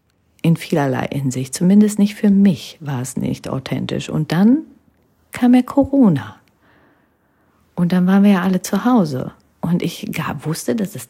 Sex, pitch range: female, 150-200 Hz